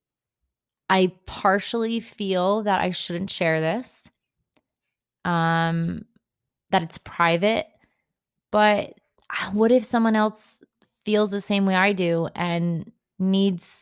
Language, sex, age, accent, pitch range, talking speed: English, female, 20-39, American, 180-210 Hz, 110 wpm